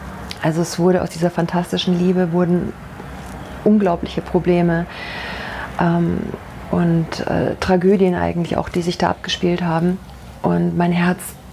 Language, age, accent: German, 40-59, German